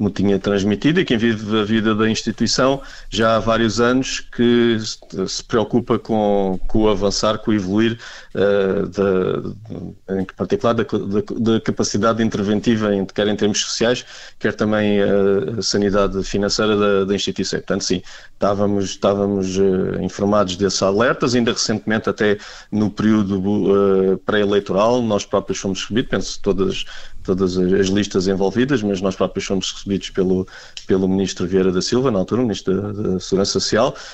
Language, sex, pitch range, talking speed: Portuguese, male, 100-135 Hz, 150 wpm